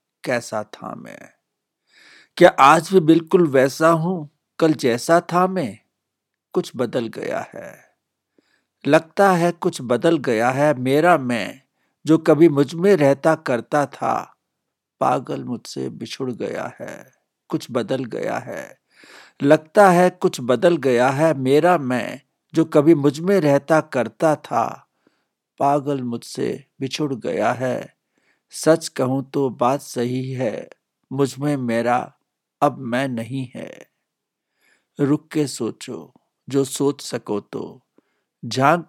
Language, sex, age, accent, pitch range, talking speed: Hindi, male, 60-79, native, 130-160 Hz, 125 wpm